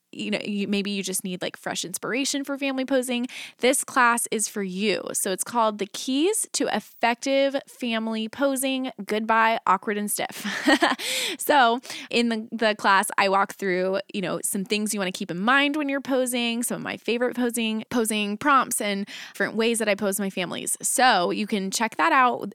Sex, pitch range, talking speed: female, 200-255 Hz, 195 wpm